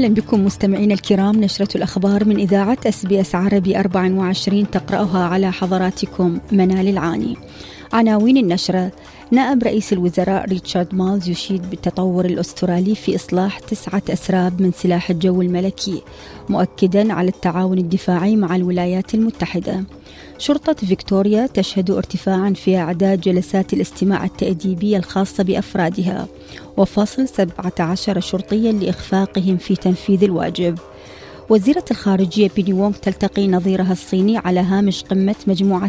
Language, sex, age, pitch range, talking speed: Arabic, female, 30-49, 185-205 Hz, 120 wpm